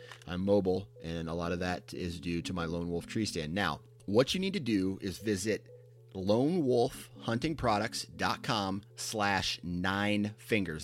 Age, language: 30-49, English